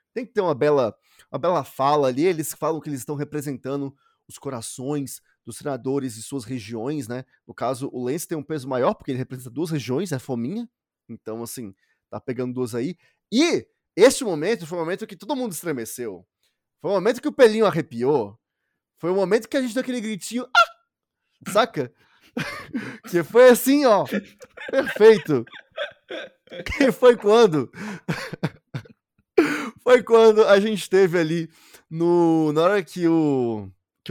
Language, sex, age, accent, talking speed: Portuguese, male, 20-39, Brazilian, 160 wpm